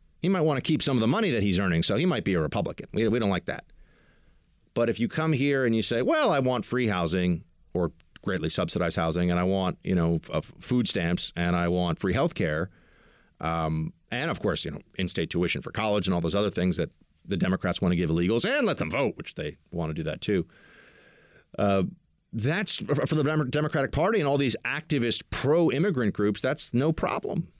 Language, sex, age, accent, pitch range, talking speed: English, male, 40-59, American, 95-155 Hz, 220 wpm